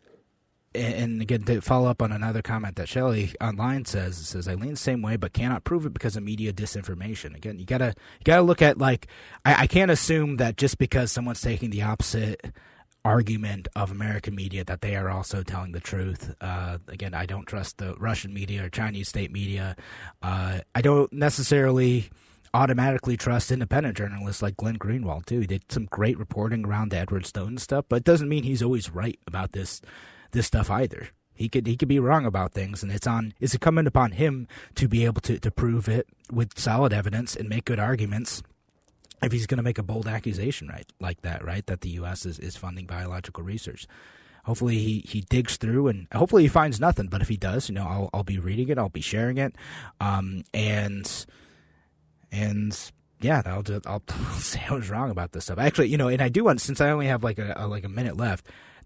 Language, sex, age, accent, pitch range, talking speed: English, male, 30-49, American, 95-125 Hz, 215 wpm